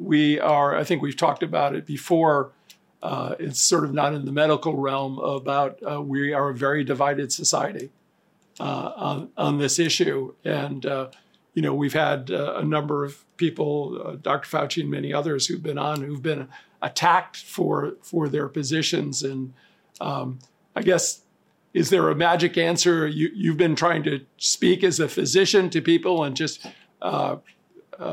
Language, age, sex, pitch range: English, 50-69, male, 145-170 Hz